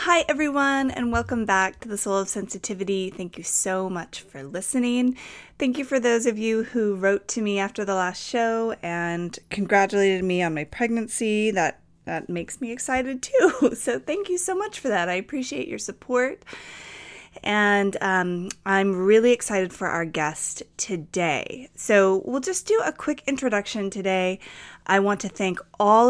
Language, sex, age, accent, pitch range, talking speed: English, female, 30-49, American, 175-235 Hz, 170 wpm